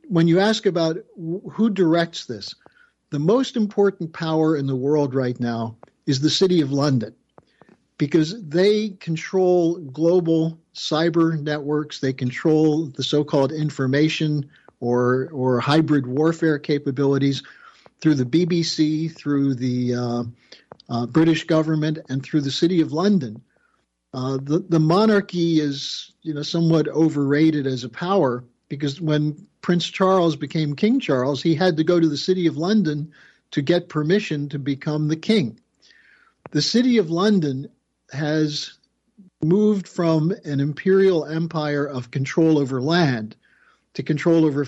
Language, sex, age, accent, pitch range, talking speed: English, male, 50-69, American, 140-175 Hz, 140 wpm